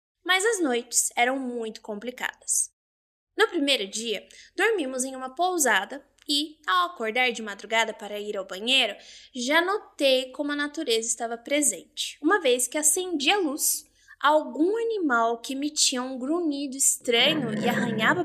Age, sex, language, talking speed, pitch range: 10-29, female, Portuguese, 145 wpm, 235-320 Hz